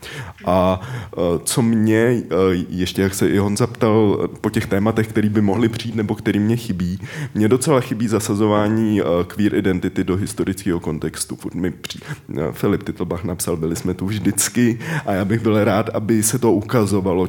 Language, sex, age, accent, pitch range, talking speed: Czech, male, 20-39, native, 90-110 Hz, 155 wpm